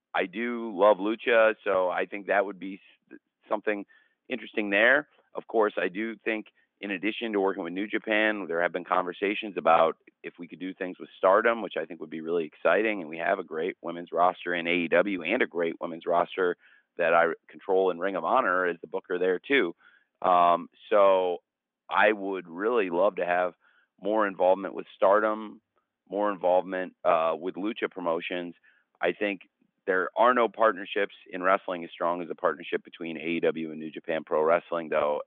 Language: English